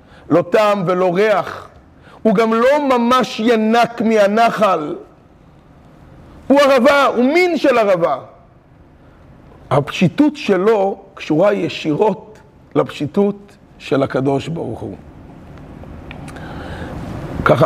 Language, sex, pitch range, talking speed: Hebrew, male, 175-240 Hz, 90 wpm